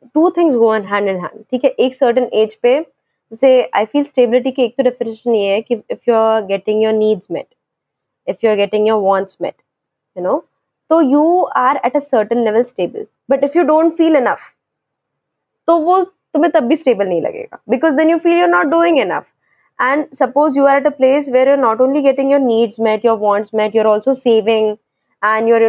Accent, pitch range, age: native, 220-285 Hz, 20-39